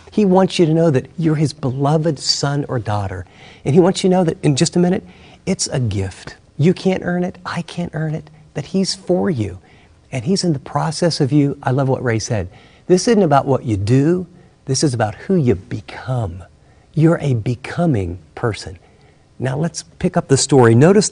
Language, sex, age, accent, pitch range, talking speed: English, male, 50-69, American, 115-170 Hz, 205 wpm